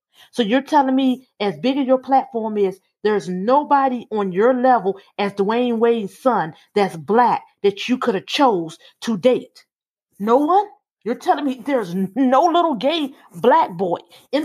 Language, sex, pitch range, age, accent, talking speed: English, female, 205-265 Hz, 40-59, American, 165 wpm